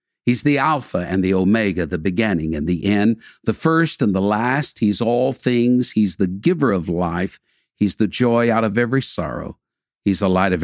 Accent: American